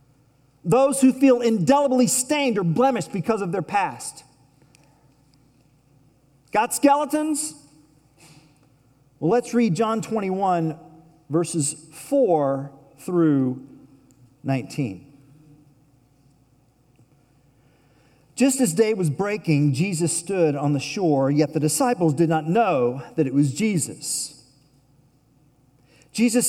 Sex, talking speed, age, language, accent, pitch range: male, 95 wpm, 50-69, English, American, 140-225 Hz